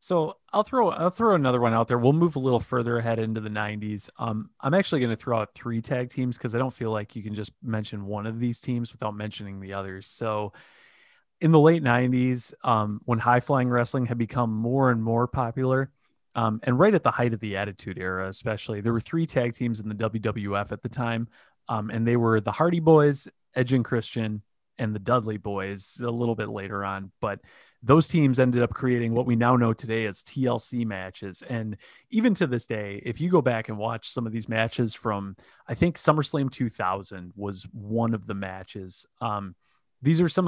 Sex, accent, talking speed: male, American, 215 wpm